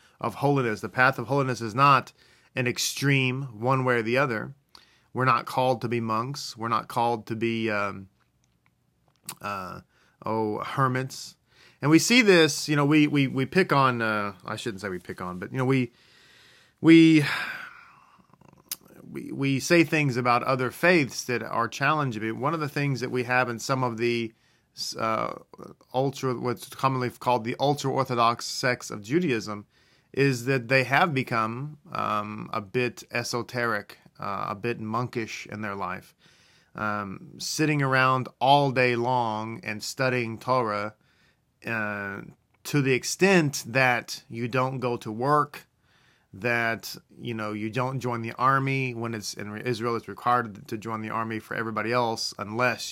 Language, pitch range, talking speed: English, 110-135 Hz, 160 wpm